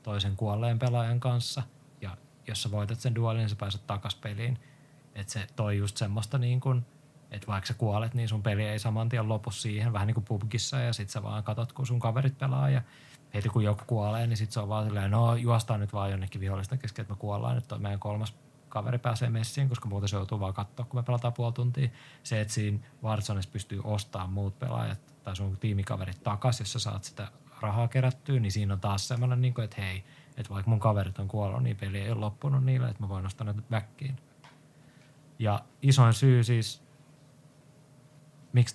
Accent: native